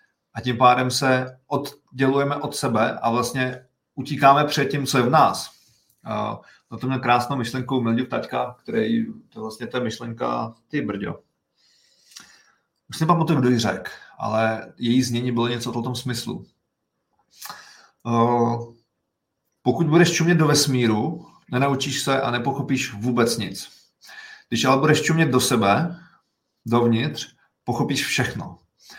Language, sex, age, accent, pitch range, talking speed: Czech, male, 40-59, native, 115-135 Hz, 135 wpm